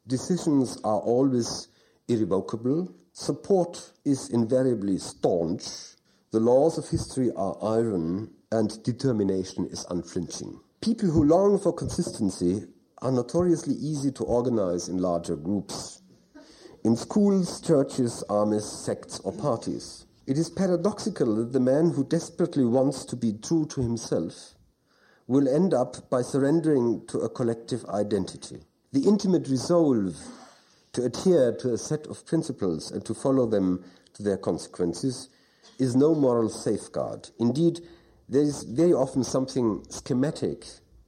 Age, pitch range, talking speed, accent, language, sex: 50-69, 105-140 Hz, 130 wpm, German, English, male